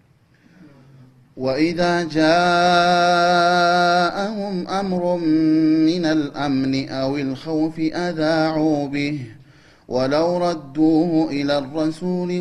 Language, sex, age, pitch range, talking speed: Amharic, male, 30-49, 140-175 Hz, 65 wpm